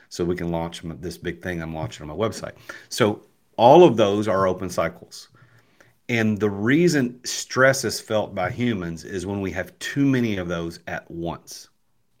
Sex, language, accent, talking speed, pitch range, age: male, English, American, 180 wpm, 85-115 Hz, 40-59